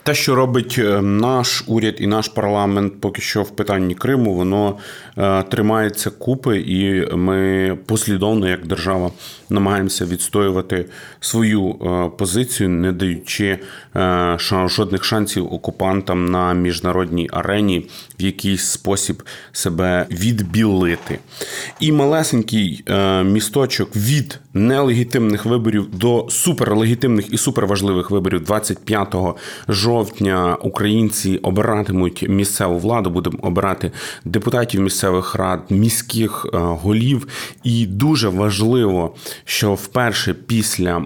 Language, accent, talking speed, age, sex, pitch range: Ukrainian, native, 100 wpm, 30-49, male, 95-115 Hz